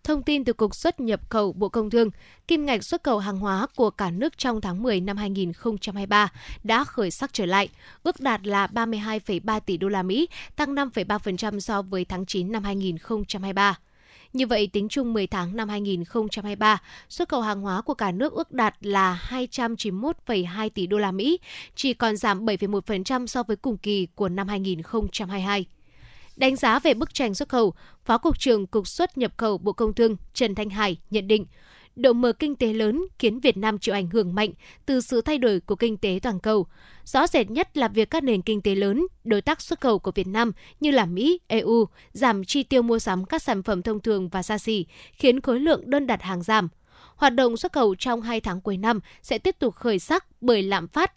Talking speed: 210 wpm